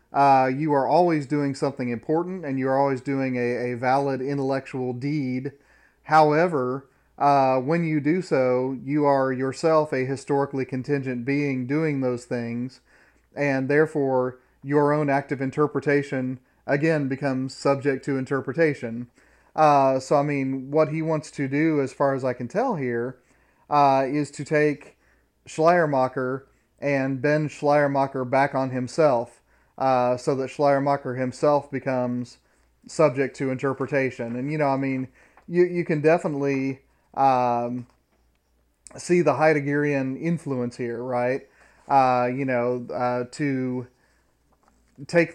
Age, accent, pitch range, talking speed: 40-59, American, 130-145 Hz, 135 wpm